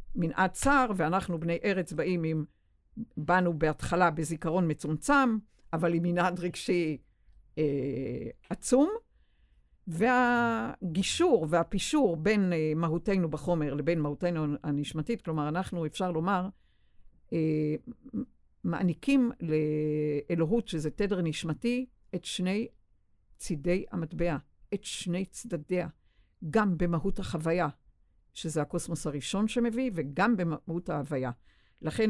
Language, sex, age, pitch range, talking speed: Hebrew, female, 60-79, 150-190 Hz, 100 wpm